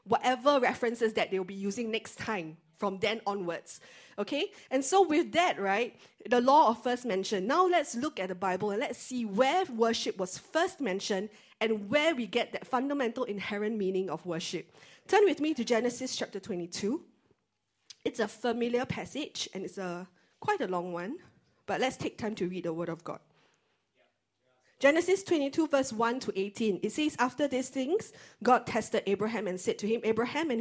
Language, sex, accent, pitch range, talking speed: English, female, Malaysian, 185-250 Hz, 180 wpm